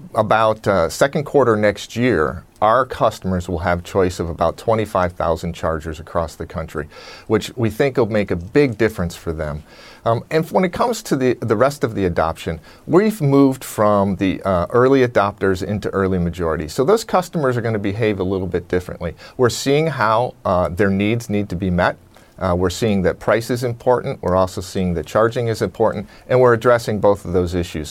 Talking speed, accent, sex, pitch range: 200 wpm, American, male, 90-115 Hz